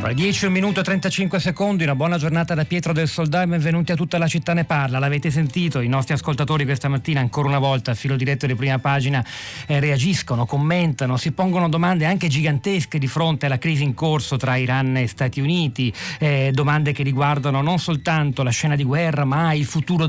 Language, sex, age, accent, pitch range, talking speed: Italian, male, 40-59, native, 130-160 Hz, 205 wpm